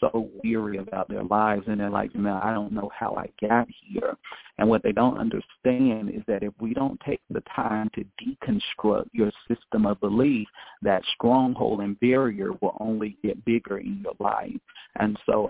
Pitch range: 105-130 Hz